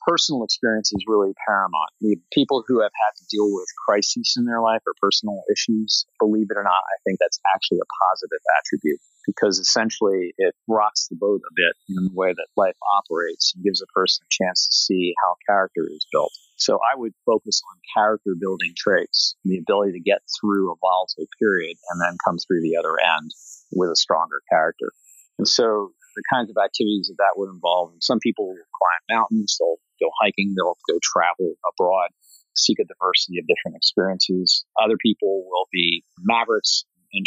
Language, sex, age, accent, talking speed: English, male, 40-59, American, 190 wpm